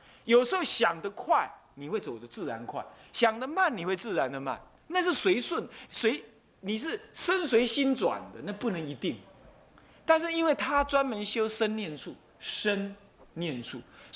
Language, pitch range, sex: Chinese, 180-270 Hz, male